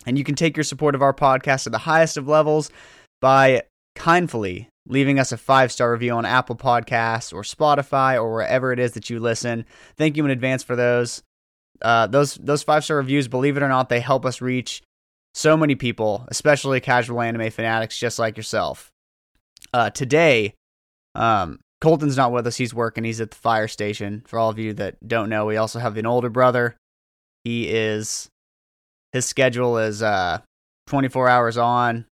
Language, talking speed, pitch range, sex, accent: English, 185 wpm, 110-135 Hz, male, American